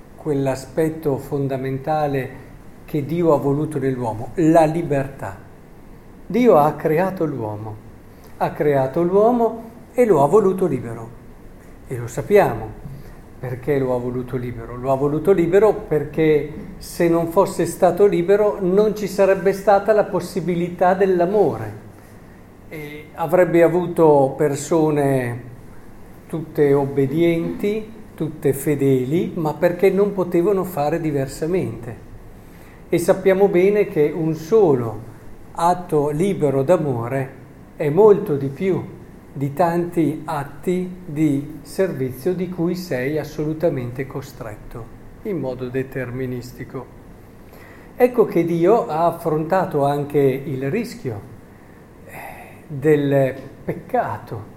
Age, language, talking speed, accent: 50-69, Italian, 105 wpm, native